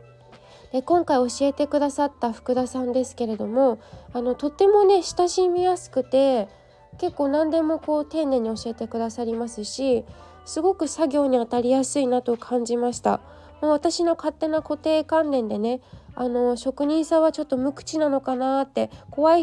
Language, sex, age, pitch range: Japanese, female, 20-39, 235-315 Hz